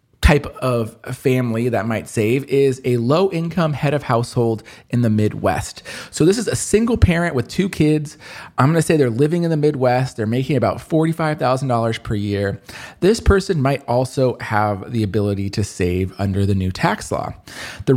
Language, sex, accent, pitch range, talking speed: English, male, American, 110-155 Hz, 185 wpm